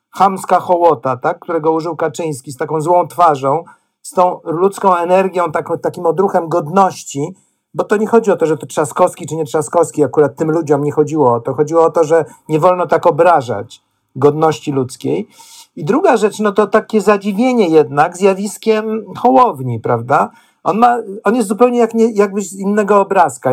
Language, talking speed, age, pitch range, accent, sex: Polish, 175 wpm, 50-69, 155-210 Hz, native, male